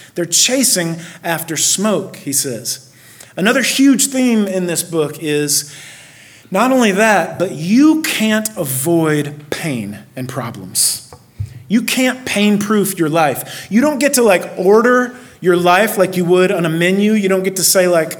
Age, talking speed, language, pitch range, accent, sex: 30-49, 160 wpm, English, 165-215 Hz, American, male